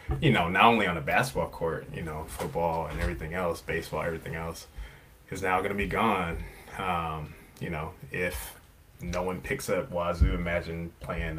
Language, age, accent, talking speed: English, 20-39, American, 180 wpm